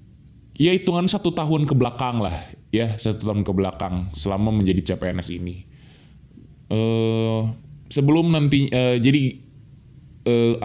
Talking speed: 115 wpm